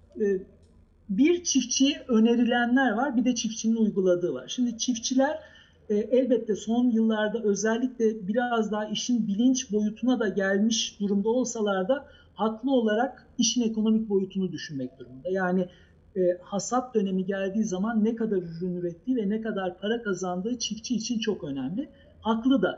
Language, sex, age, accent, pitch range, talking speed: Turkish, male, 50-69, native, 195-240 Hz, 135 wpm